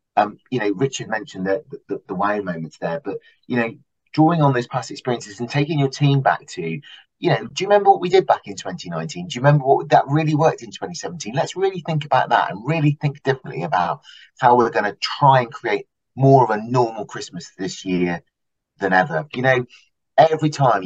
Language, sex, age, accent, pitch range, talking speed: English, male, 30-49, British, 90-145 Hz, 225 wpm